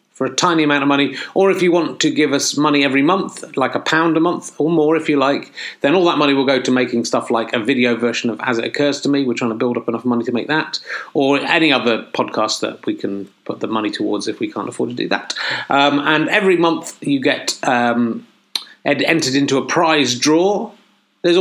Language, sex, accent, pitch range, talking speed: English, male, British, 115-155 Hz, 245 wpm